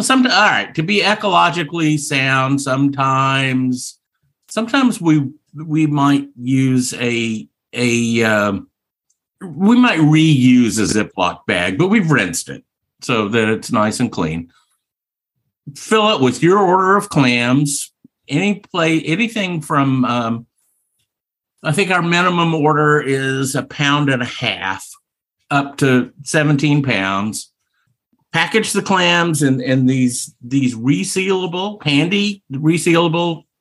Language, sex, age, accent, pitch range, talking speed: English, male, 50-69, American, 125-165 Hz, 125 wpm